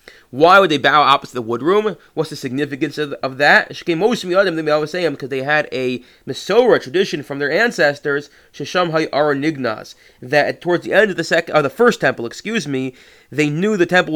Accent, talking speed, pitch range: American, 215 wpm, 135-170 Hz